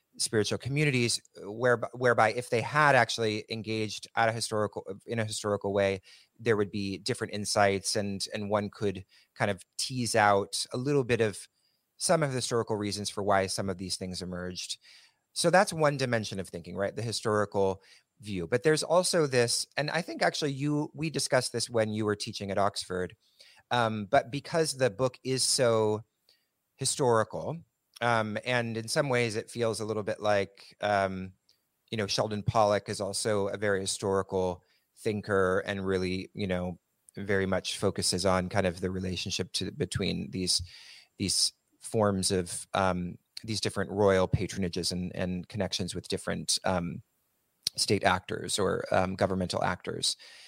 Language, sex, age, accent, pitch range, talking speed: English, male, 30-49, American, 95-120 Hz, 165 wpm